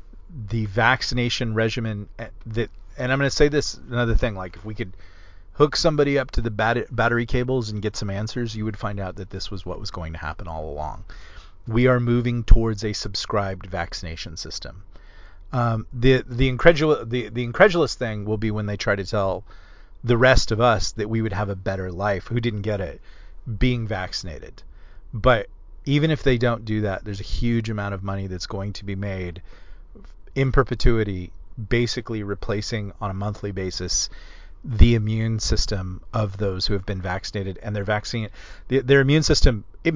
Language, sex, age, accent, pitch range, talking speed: English, male, 40-59, American, 95-120 Hz, 185 wpm